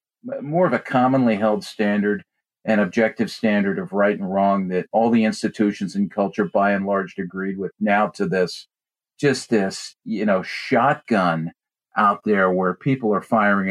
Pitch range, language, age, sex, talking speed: 95-135 Hz, English, 50-69, male, 165 wpm